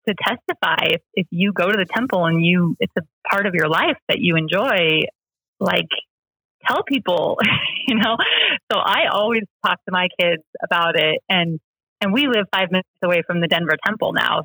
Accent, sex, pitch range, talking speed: American, female, 170-235 Hz, 190 wpm